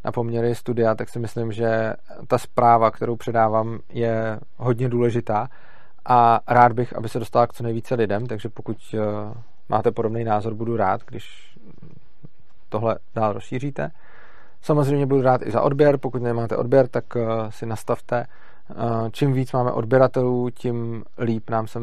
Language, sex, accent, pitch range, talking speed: Czech, male, native, 110-120 Hz, 150 wpm